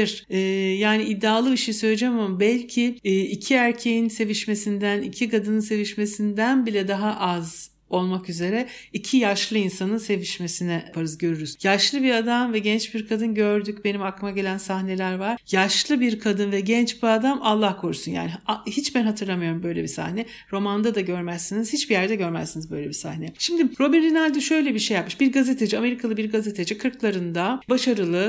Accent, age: native, 60-79